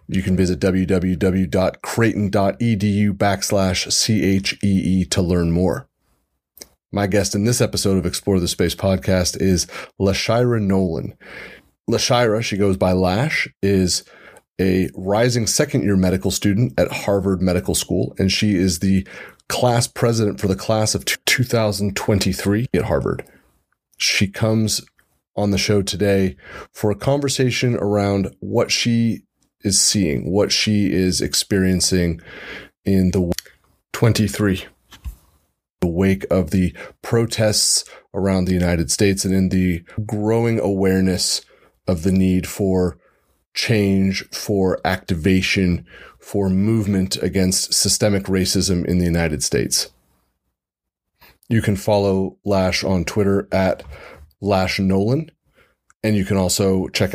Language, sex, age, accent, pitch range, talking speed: English, male, 30-49, American, 90-105 Hz, 120 wpm